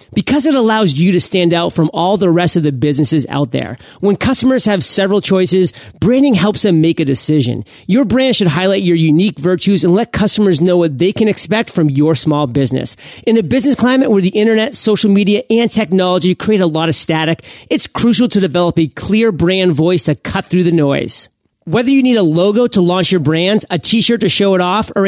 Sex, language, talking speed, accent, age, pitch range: male, English, 220 wpm, American, 30-49, 160-210 Hz